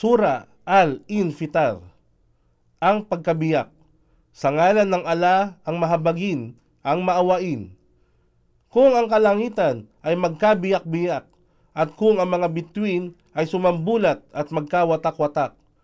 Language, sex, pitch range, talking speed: Filipino, male, 145-190 Hz, 100 wpm